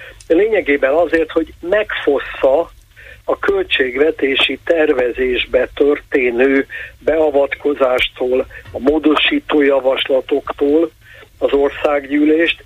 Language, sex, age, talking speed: Hungarian, male, 50-69, 60 wpm